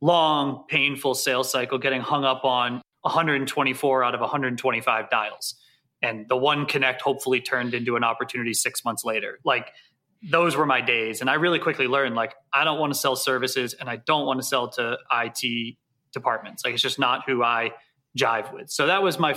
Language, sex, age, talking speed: English, male, 30-49, 195 wpm